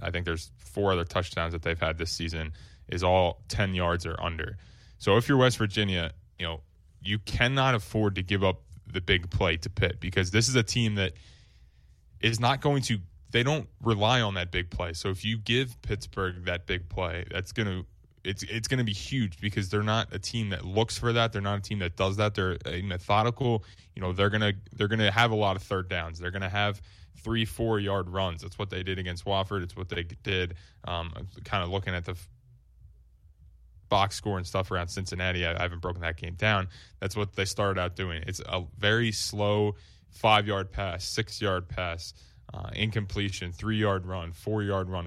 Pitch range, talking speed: 90-105 Hz, 210 wpm